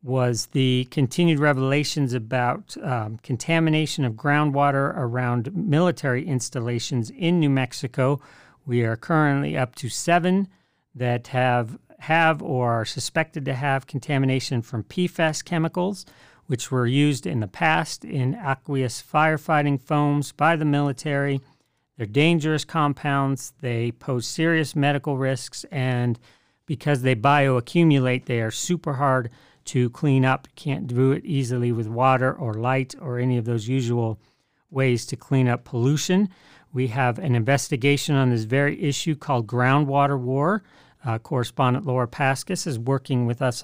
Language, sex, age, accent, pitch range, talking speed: English, male, 50-69, American, 125-150 Hz, 140 wpm